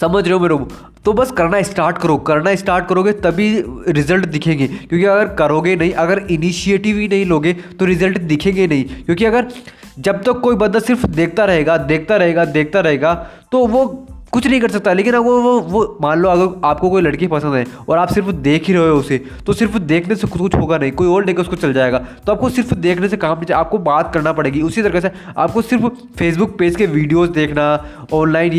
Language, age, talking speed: Hindi, 20-39, 215 wpm